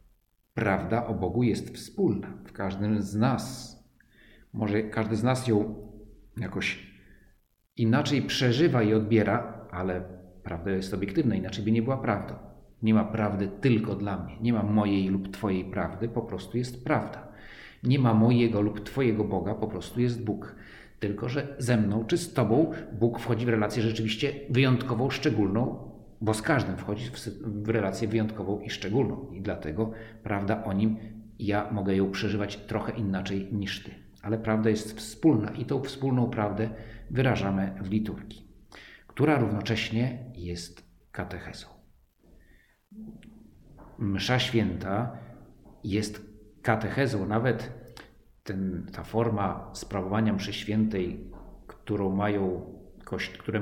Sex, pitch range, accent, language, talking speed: male, 100-115 Hz, native, Polish, 130 wpm